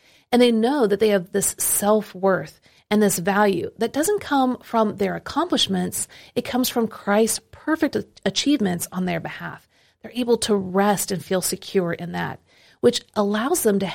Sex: female